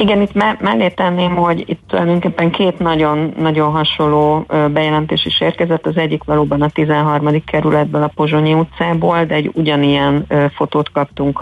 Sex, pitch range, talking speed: female, 140-155 Hz, 145 wpm